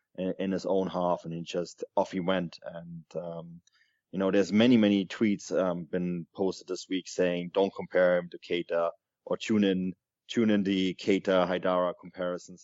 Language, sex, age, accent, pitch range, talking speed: English, male, 20-39, German, 90-100 Hz, 180 wpm